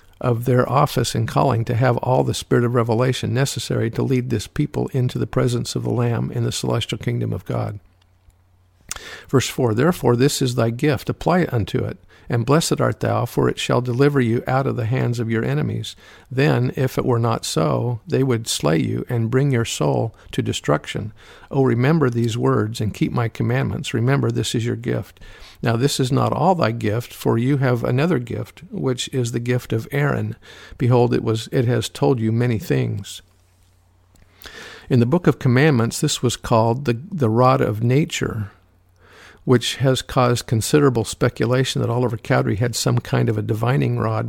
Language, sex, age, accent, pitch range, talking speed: English, male, 50-69, American, 110-130 Hz, 190 wpm